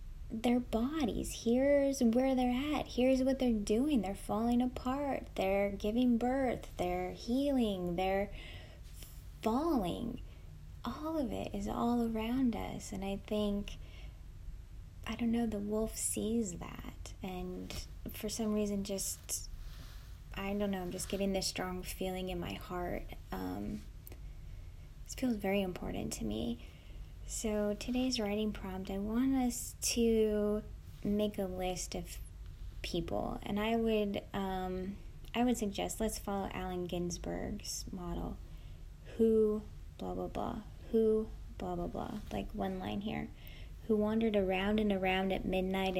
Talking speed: 135 wpm